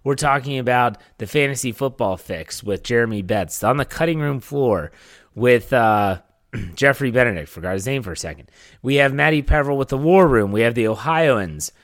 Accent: American